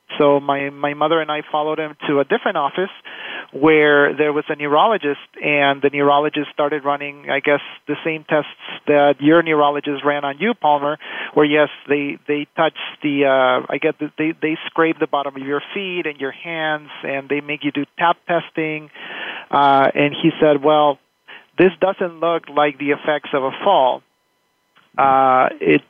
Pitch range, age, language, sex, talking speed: 140-155 Hz, 40-59, English, male, 180 wpm